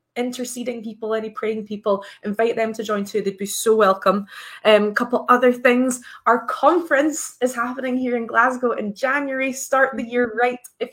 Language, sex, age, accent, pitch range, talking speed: English, female, 20-39, British, 210-265 Hz, 175 wpm